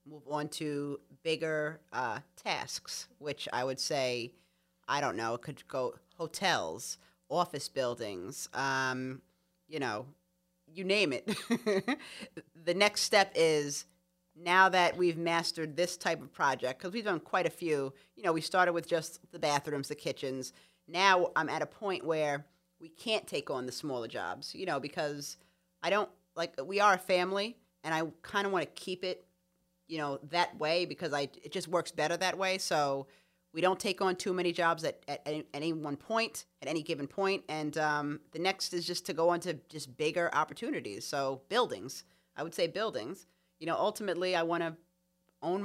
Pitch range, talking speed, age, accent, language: 145-180 Hz, 180 wpm, 30-49, American, English